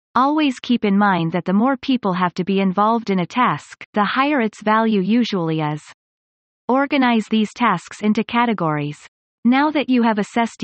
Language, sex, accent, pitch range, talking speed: English, female, American, 185-240 Hz, 175 wpm